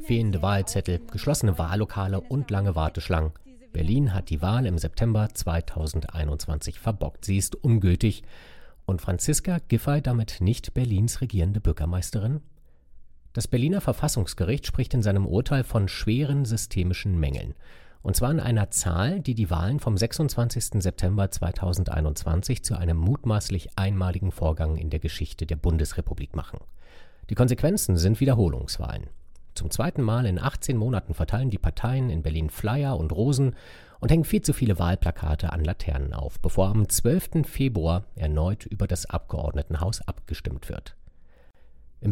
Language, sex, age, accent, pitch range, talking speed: German, male, 40-59, German, 85-120 Hz, 140 wpm